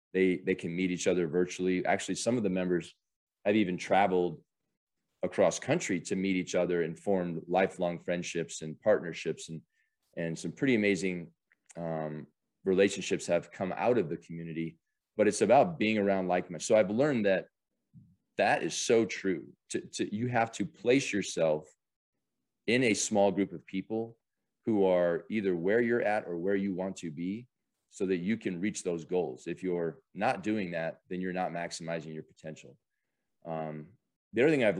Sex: male